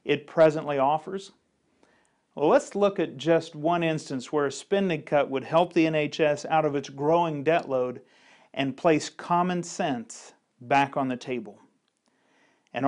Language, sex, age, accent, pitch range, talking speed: English, male, 40-59, American, 140-175 Hz, 155 wpm